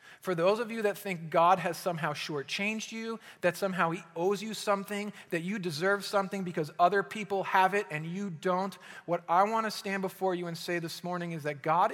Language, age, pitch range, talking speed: English, 40-59, 180-230 Hz, 215 wpm